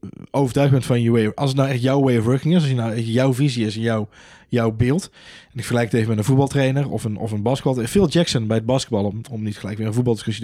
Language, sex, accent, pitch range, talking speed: Dutch, male, Dutch, 110-135 Hz, 265 wpm